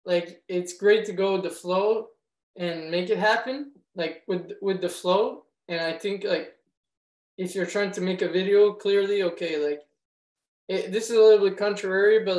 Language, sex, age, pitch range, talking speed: French, male, 20-39, 175-200 Hz, 190 wpm